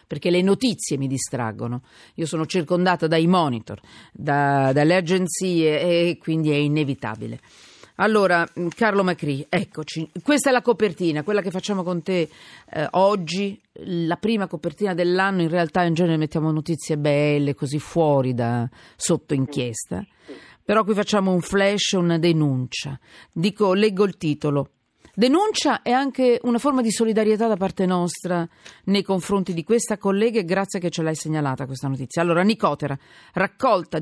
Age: 40-59